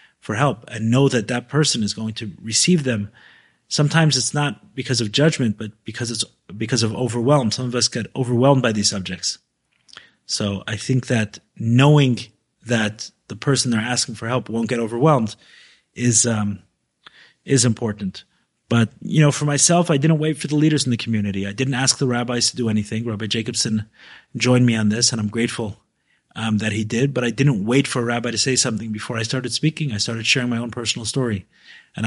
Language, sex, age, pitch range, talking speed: English, male, 30-49, 110-130 Hz, 200 wpm